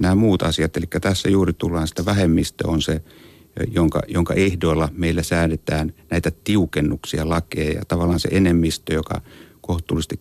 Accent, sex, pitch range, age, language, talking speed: native, male, 80-95 Hz, 60-79, Finnish, 140 wpm